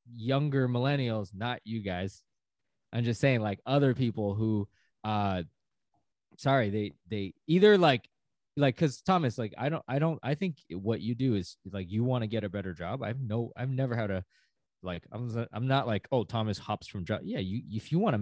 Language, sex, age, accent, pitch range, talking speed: English, male, 20-39, American, 100-140 Hz, 205 wpm